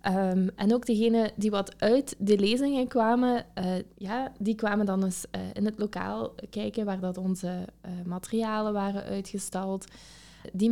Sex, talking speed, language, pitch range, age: female, 145 wpm, Dutch, 185-225 Hz, 20-39